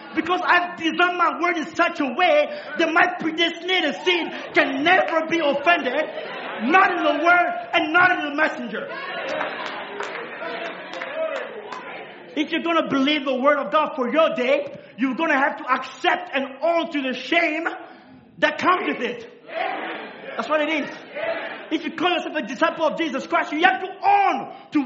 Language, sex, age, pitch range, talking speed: English, male, 50-69, 265-330 Hz, 170 wpm